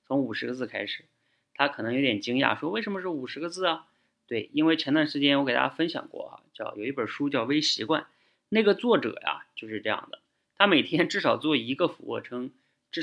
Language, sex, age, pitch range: Chinese, male, 20-39, 110-150 Hz